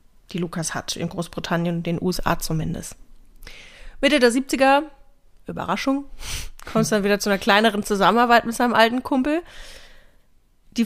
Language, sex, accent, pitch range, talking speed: German, female, German, 180-230 Hz, 140 wpm